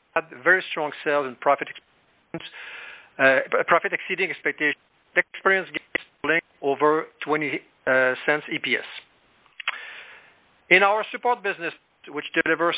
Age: 50-69